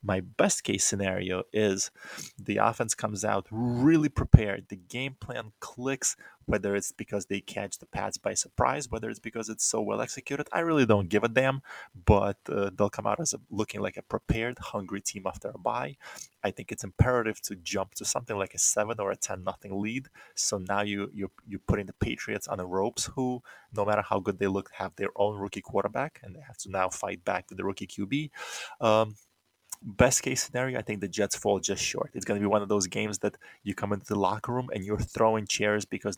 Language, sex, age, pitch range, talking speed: English, male, 20-39, 100-110 Hz, 220 wpm